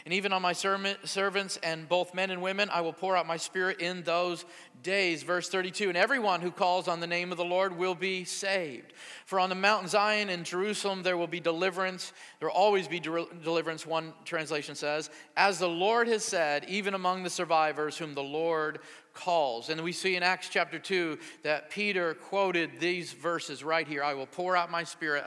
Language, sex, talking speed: English, male, 200 wpm